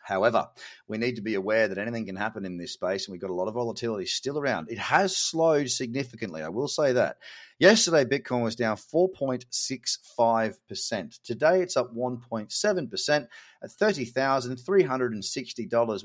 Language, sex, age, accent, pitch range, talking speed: English, male, 30-49, Australian, 110-145 Hz, 155 wpm